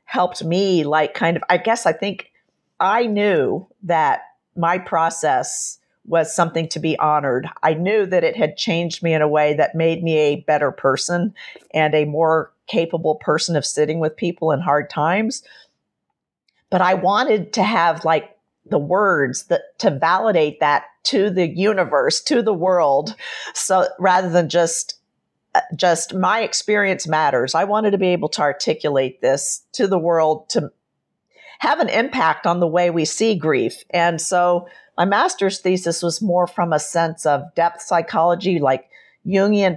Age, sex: 50-69, female